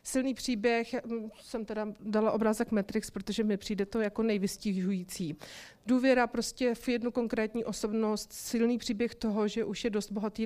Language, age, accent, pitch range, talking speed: Czech, 30-49, native, 205-230 Hz, 155 wpm